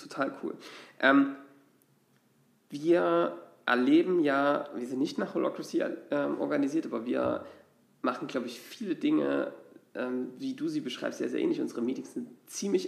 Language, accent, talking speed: German, German, 135 wpm